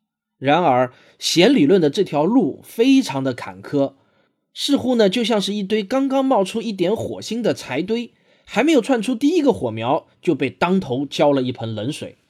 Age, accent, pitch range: 20-39, native, 135-210 Hz